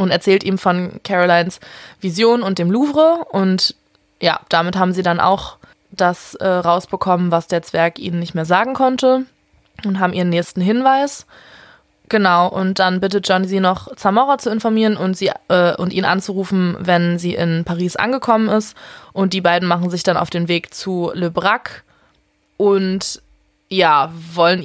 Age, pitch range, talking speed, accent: 20-39, 175-220 Hz, 170 wpm, German